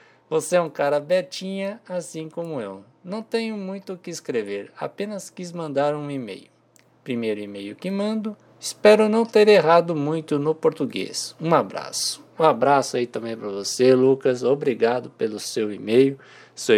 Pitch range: 125-185 Hz